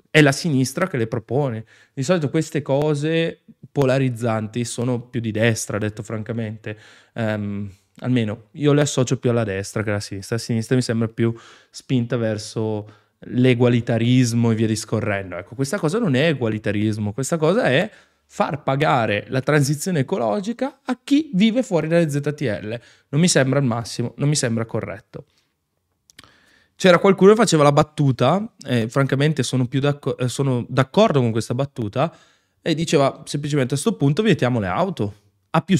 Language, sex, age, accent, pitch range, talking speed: Italian, male, 20-39, native, 115-150 Hz, 160 wpm